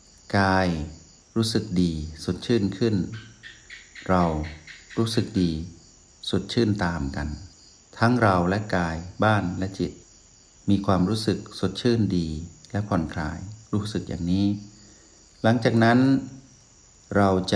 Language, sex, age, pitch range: Thai, male, 60-79, 90-110 Hz